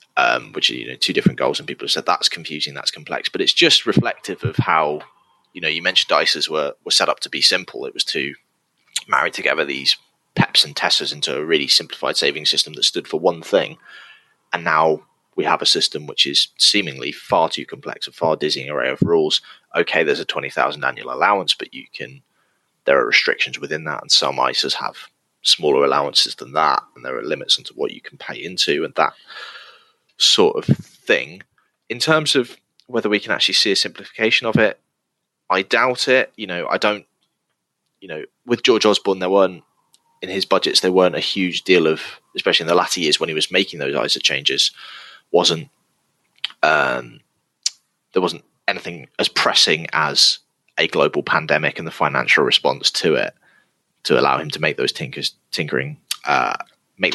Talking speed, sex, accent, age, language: 190 wpm, male, British, 20-39, English